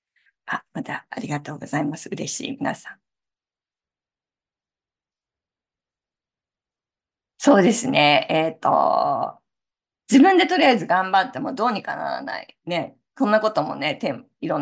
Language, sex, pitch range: Japanese, female, 195-280 Hz